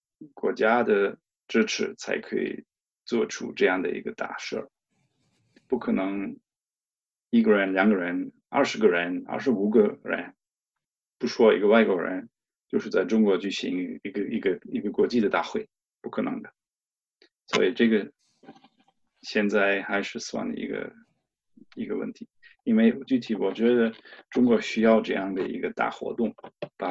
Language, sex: English, male